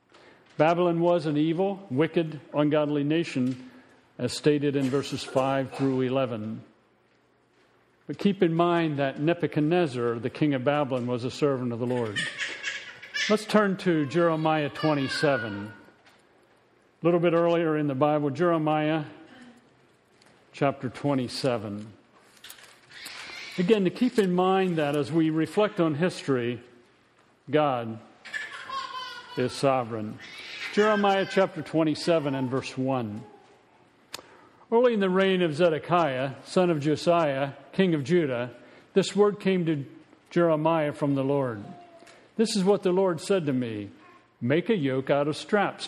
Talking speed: 130 wpm